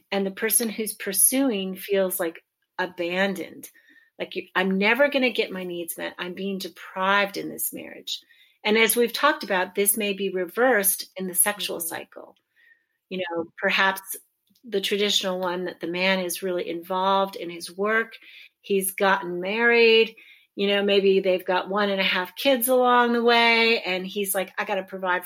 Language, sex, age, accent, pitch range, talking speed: English, female, 40-59, American, 185-235 Hz, 175 wpm